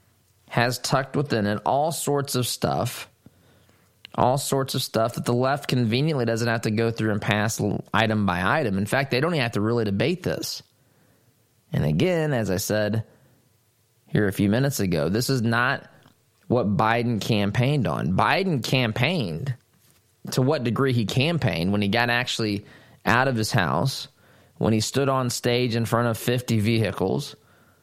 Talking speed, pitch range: 170 wpm, 110-130 Hz